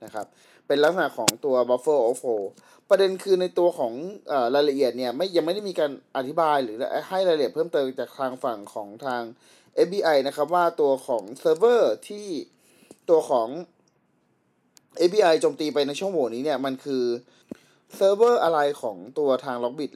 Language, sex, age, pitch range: Thai, male, 20-39, 130-185 Hz